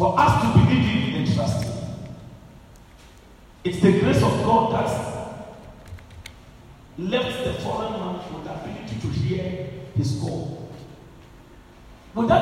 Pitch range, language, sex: 115-165 Hz, English, male